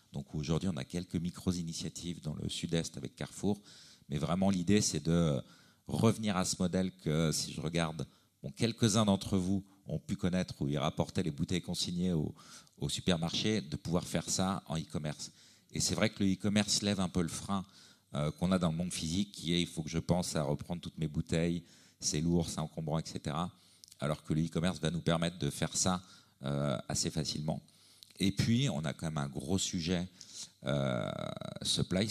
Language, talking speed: French, 200 wpm